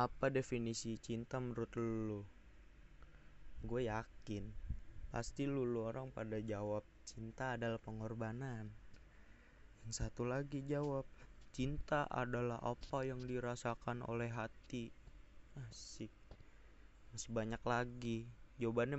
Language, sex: Indonesian, male